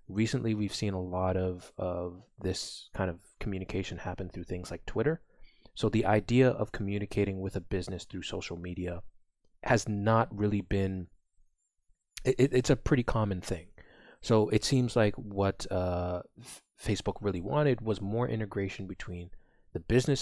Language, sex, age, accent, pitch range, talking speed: English, male, 20-39, American, 95-110 Hz, 150 wpm